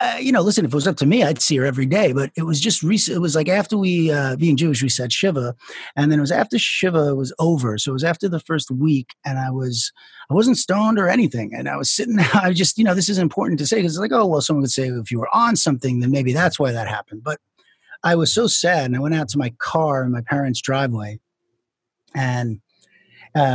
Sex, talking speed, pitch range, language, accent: male, 265 wpm, 125-160 Hz, English, American